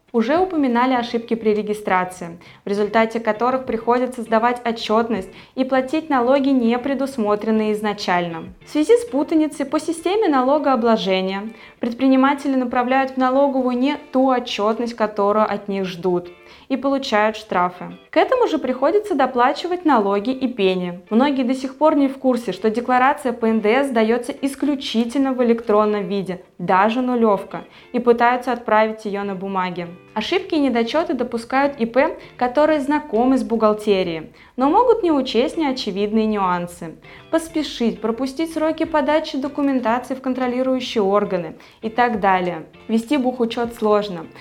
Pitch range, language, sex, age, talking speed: 210-275 Hz, Russian, female, 20-39, 135 wpm